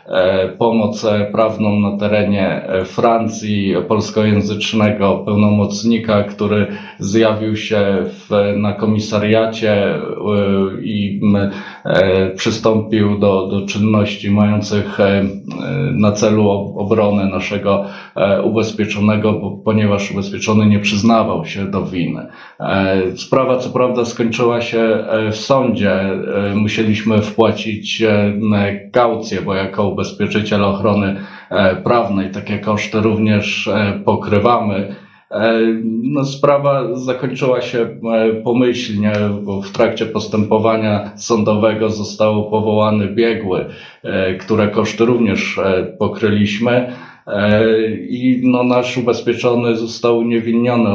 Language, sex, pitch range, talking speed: Polish, male, 105-115 Hz, 85 wpm